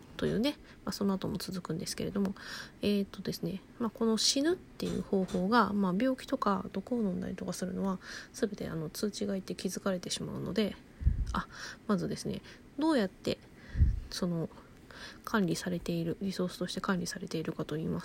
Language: Japanese